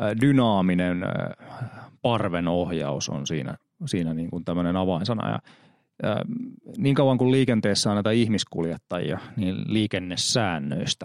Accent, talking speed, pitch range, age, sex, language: native, 90 wpm, 90-115 Hz, 30-49, male, Finnish